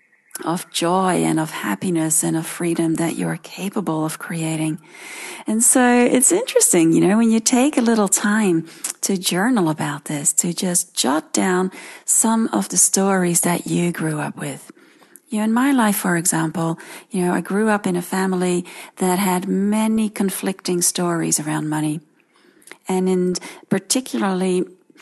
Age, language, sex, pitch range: 40-59, English, female, 170-205 Hz